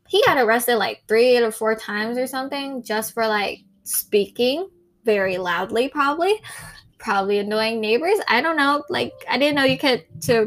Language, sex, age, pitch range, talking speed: English, female, 10-29, 210-280 Hz, 170 wpm